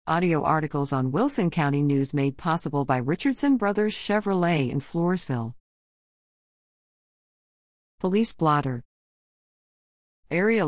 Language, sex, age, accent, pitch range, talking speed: English, female, 50-69, American, 145-205 Hz, 95 wpm